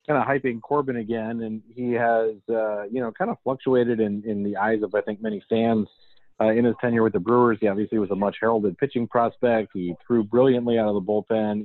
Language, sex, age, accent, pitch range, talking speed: English, male, 40-59, American, 105-125 Hz, 225 wpm